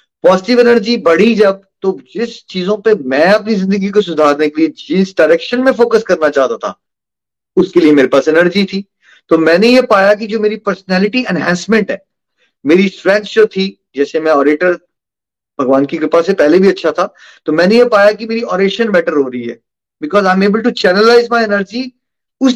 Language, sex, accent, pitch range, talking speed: Hindi, male, native, 170-225 Hz, 195 wpm